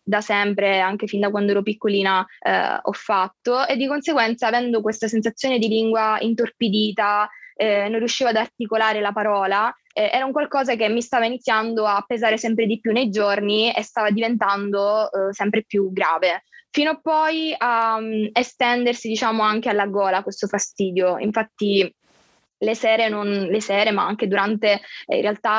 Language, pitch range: Italian, 200-230 Hz